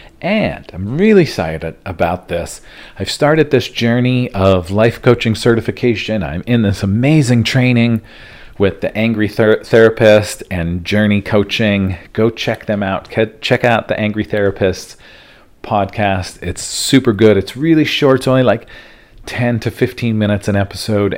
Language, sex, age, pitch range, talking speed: English, male, 40-59, 100-125 Hz, 145 wpm